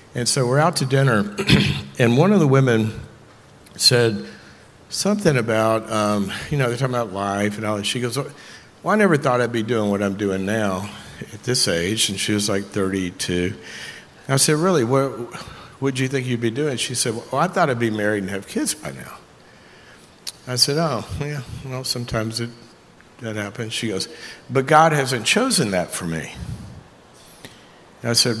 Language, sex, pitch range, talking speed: English, male, 105-140 Hz, 185 wpm